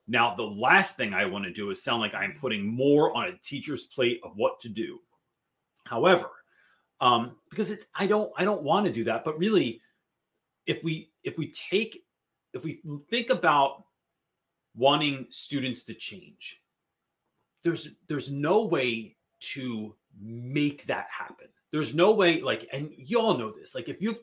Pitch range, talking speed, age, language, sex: 140-200 Hz, 170 wpm, 30-49, English, male